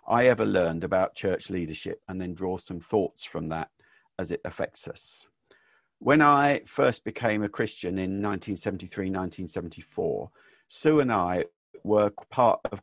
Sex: male